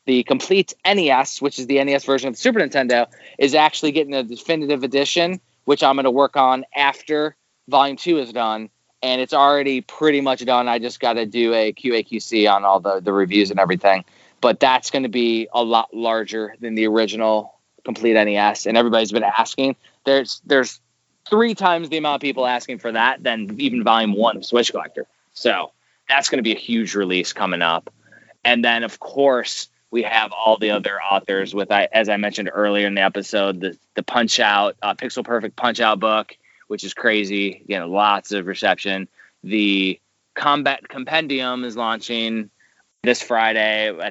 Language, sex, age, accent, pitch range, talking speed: English, male, 20-39, American, 105-135 Hz, 185 wpm